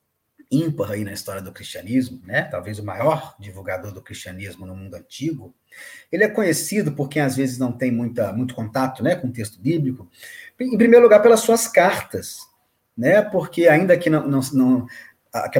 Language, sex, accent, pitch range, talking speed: Portuguese, male, Brazilian, 115-165 Hz, 165 wpm